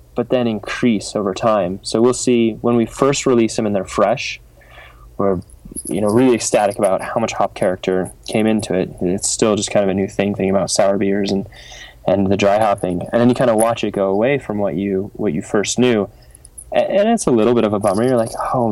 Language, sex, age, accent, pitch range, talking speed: English, male, 10-29, American, 95-115 Hz, 240 wpm